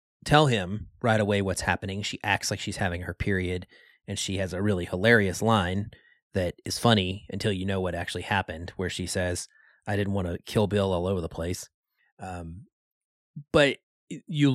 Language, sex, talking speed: English, male, 185 wpm